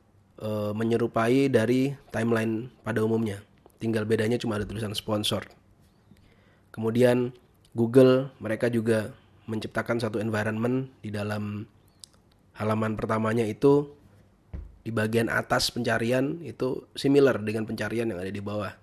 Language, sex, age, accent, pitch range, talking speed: Indonesian, male, 20-39, native, 105-130 Hz, 110 wpm